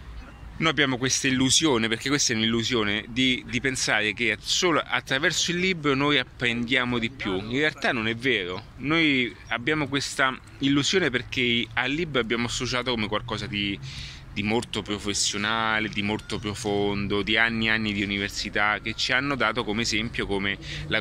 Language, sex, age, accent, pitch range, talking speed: Italian, male, 30-49, native, 105-130 Hz, 165 wpm